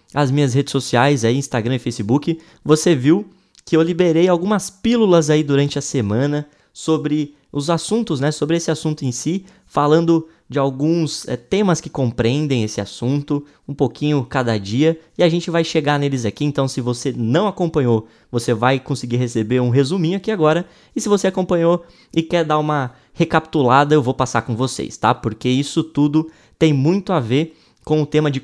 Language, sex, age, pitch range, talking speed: Portuguese, male, 20-39, 125-170 Hz, 185 wpm